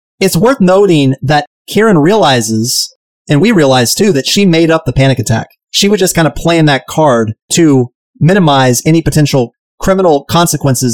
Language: English